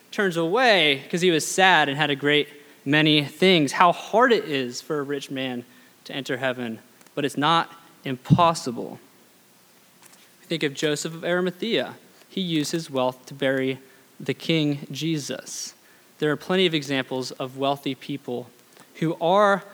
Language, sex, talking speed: English, male, 155 wpm